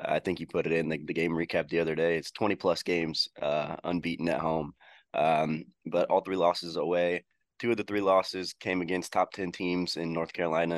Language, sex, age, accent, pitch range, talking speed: English, male, 20-39, American, 85-90 Hz, 215 wpm